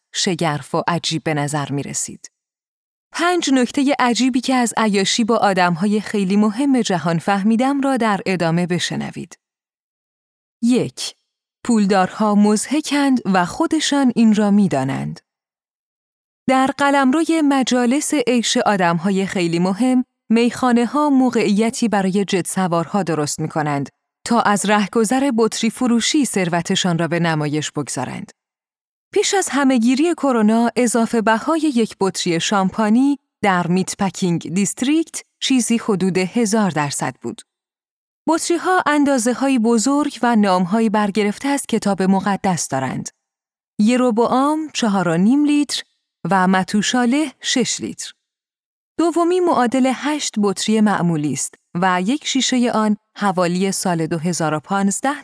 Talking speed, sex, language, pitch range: 120 wpm, female, Persian, 185-260 Hz